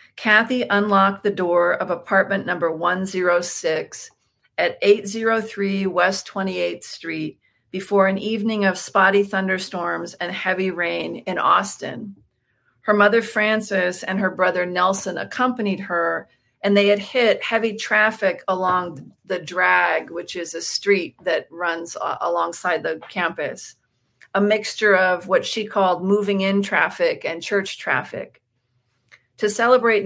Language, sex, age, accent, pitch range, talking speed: English, female, 40-59, American, 180-205 Hz, 130 wpm